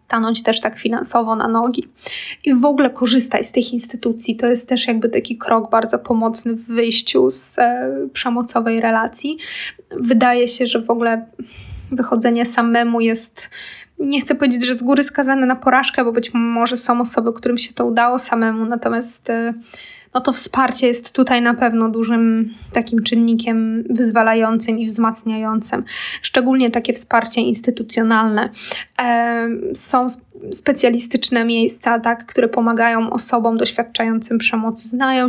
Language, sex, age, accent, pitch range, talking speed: Polish, female, 20-39, native, 230-250 Hz, 140 wpm